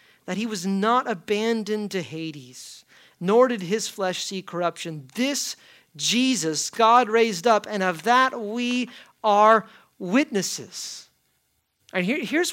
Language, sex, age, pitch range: English, male, 40-59, 150-230 Hz